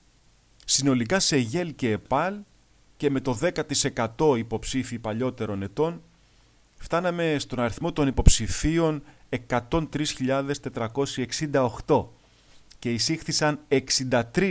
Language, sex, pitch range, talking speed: Greek, male, 125-155 Hz, 85 wpm